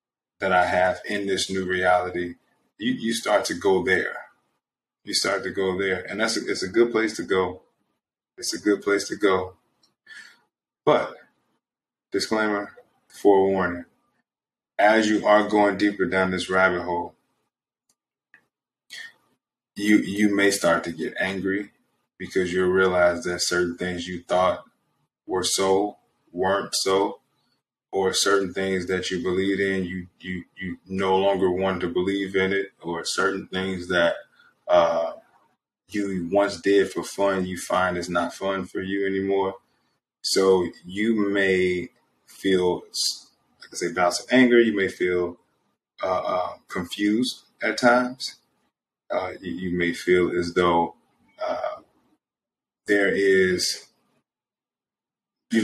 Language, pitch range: English, 90-100 Hz